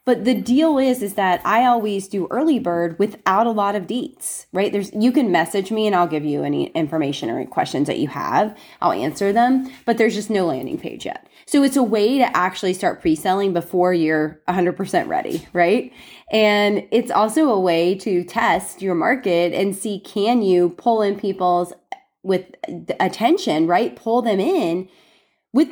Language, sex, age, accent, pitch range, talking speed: English, female, 20-39, American, 185-255 Hz, 185 wpm